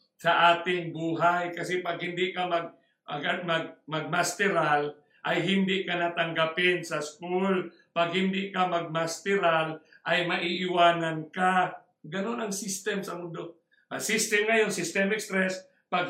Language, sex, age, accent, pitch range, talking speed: English, male, 50-69, Filipino, 170-205 Hz, 130 wpm